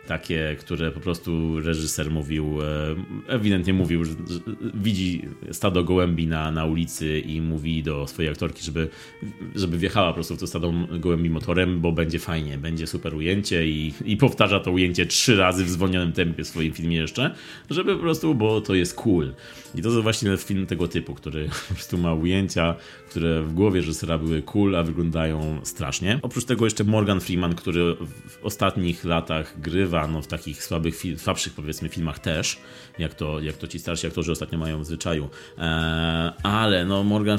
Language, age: Polish, 30-49